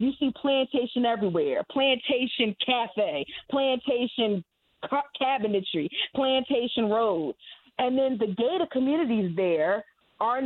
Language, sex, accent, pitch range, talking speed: English, female, American, 225-285 Hz, 100 wpm